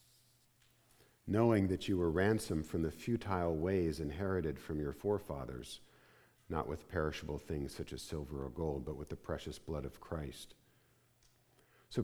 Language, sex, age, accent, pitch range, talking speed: English, male, 50-69, American, 80-115 Hz, 150 wpm